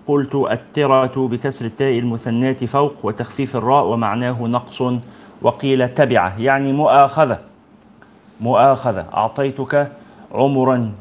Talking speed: 95 wpm